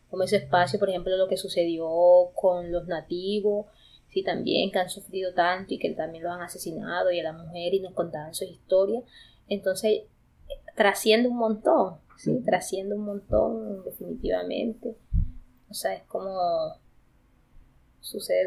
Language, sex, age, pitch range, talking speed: Spanish, female, 20-39, 175-200 Hz, 150 wpm